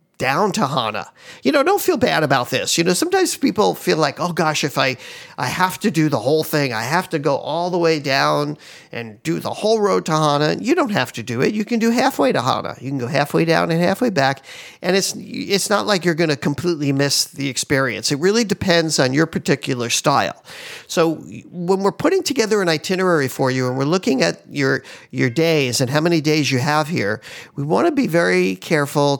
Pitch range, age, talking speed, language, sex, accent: 135-175 Hz, 50-69, 225 wpm, English, male, American